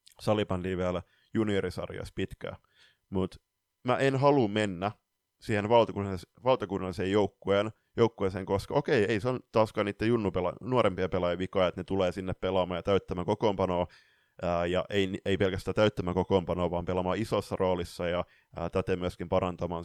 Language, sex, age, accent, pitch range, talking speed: Finnish, male, 30-49, native, 90-110 Hz, 140 wpm